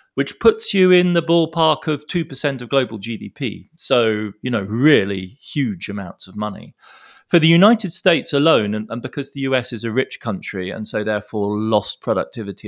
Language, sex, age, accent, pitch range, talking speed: English, male, 30-49, British, 95-135 Hz, 180 wpm